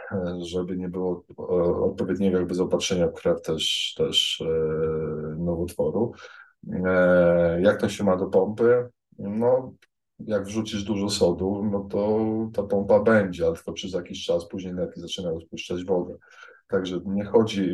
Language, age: Polish, 20-39